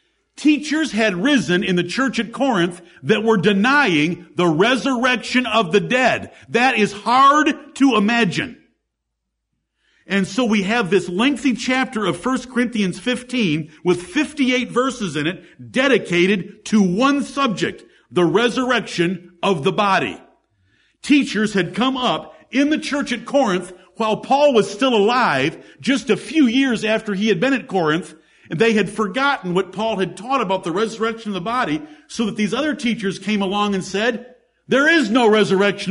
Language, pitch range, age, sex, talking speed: English, 195-265 Hz, 50-69, male, 160 wpm